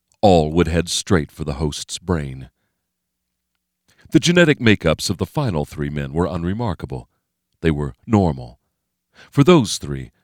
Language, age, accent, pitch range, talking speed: English, 40-59, American, 75-105 Hz, 140 wpm